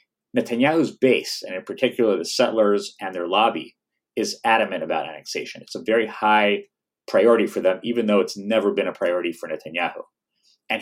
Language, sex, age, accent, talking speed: English, male, 30-49, American, 170 wpm